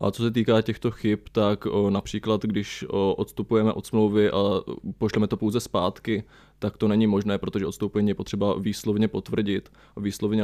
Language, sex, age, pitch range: Czech, male, 20-39, 105-115 Hz